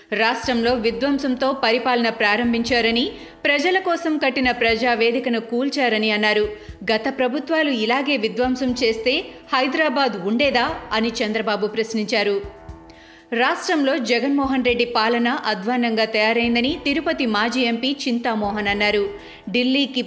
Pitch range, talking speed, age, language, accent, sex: 225-270 Hz, 95 wpm, 30-49, Telugu, native, female